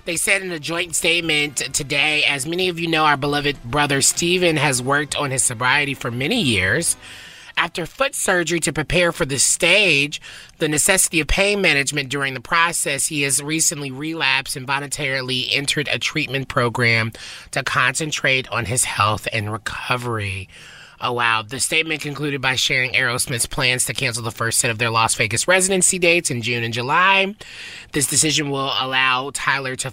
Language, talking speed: English, 175 wpm